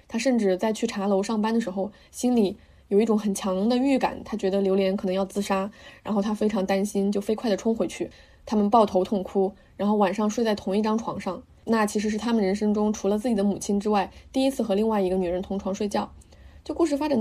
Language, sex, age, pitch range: Chinese, female, 20-39, 195-235 Hz